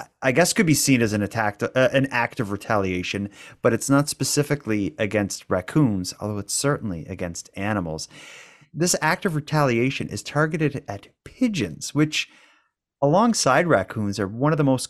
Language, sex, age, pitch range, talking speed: English, male, 30-49, 110-155 Hz, 160 wpm